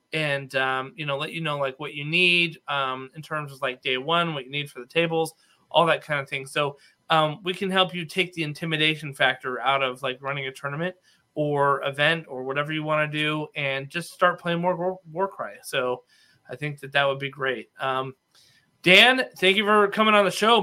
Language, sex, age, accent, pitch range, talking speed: English, male, 30-49, American, 135-170 Hz, 225 wpm